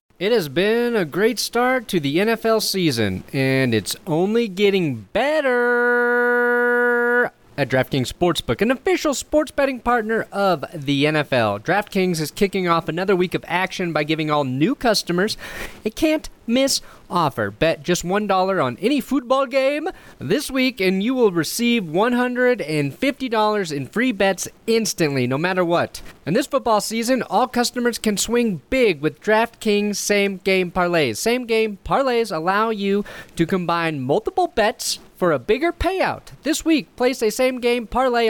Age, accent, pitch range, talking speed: 30-49, American, 160-240 Hz, 155 wpm